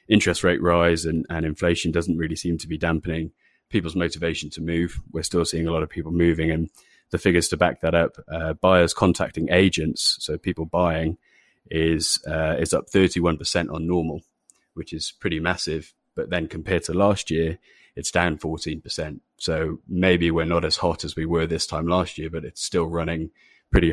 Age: 30-49